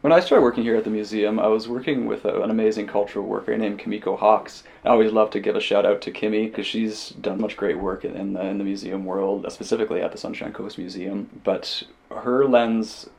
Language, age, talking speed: English, 20-39, 235 wpm